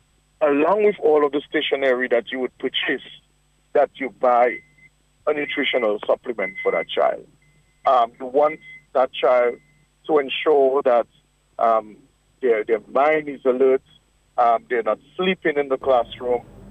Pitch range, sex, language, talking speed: 125-160 Hz, male, English, 145 wpm